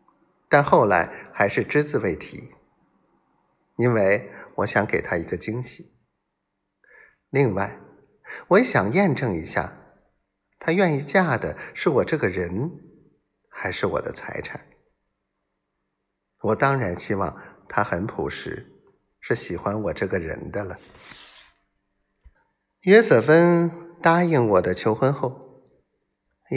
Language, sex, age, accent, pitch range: Chinese, male, 50-69, native, 100-140 Hz